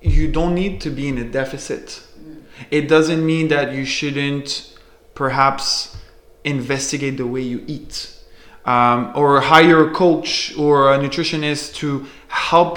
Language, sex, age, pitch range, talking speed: English, male, 20-39, 130-165 Hz, 140 wpm